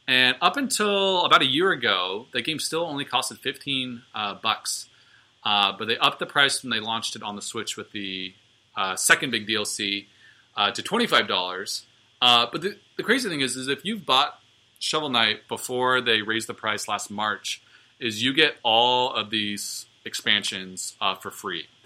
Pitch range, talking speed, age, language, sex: 110-130 Hz, 180 wpm, 30-49, English, male